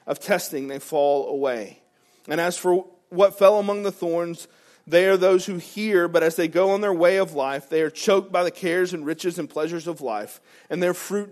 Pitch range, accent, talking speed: 155-210 Hz, American, 225 wpm